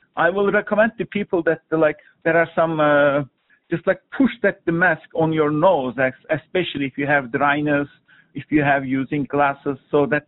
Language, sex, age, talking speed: English, male, 50-69, 195 wpm